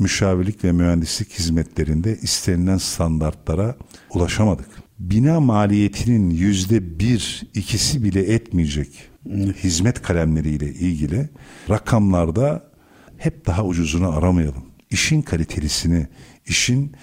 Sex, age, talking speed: male, 50-69, 90 wpm